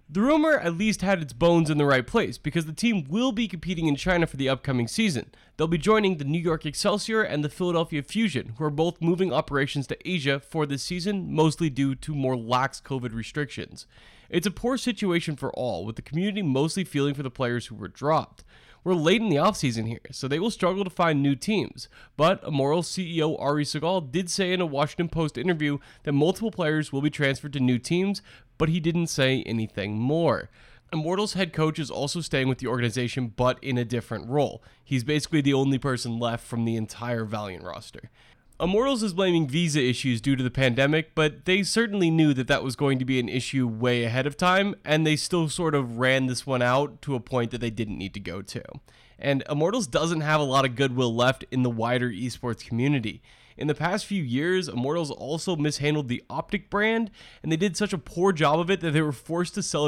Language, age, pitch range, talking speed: English, 20-39, 130-175 Hz, 220 wpm